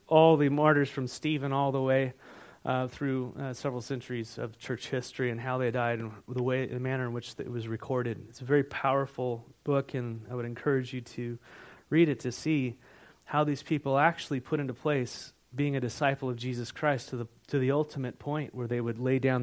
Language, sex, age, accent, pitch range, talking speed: English, male, 30-49, American, 130-175 Hz, 215 wpm